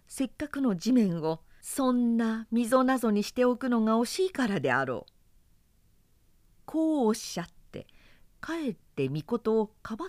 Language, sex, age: Japanese, female, 50-69